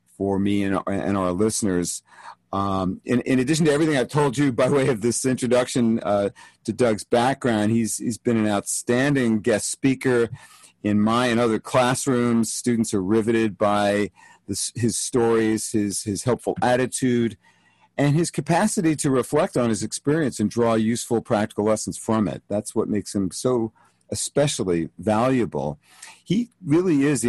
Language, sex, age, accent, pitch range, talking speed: English, male, 50-69, American, 110-135 Hz, 160 wpm